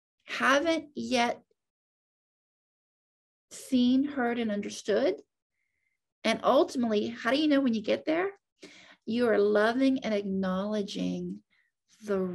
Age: 40-59